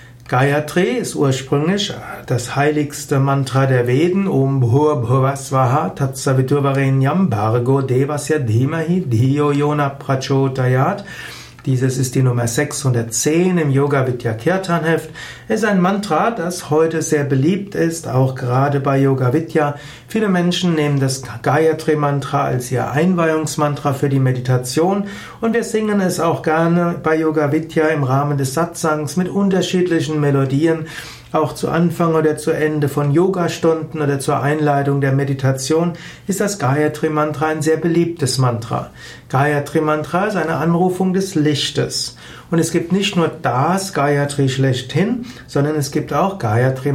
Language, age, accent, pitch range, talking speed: German, 60-79, German, 135-165 Hz, 140 wpm